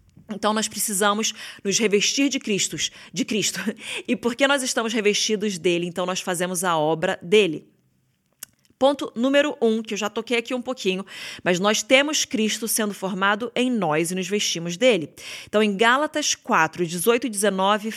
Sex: female